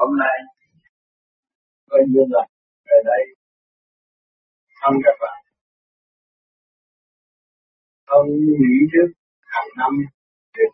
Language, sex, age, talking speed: Vietnamese, male, 50-69, 90 wpm